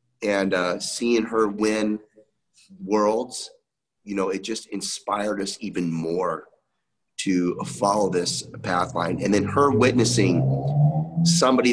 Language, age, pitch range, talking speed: English, 30-49, 100-120 Hz, 120 wpm